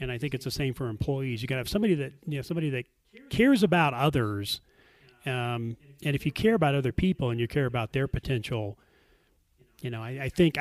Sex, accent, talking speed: male, American, 225 wpm